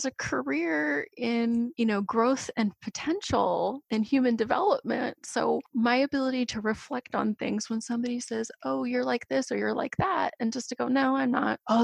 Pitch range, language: 215-255 Hz, English